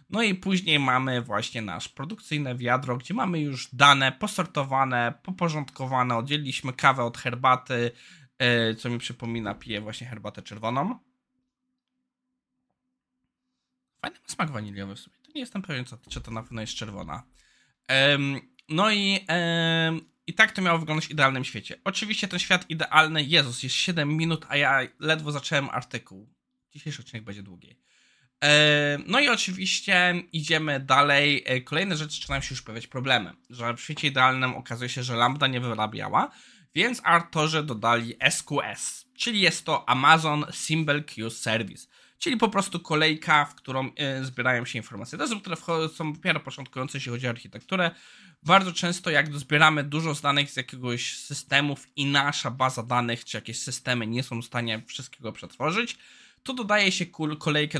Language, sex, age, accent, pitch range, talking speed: Polish, male, 20-39, native, 120-165 Hz, 155 wpm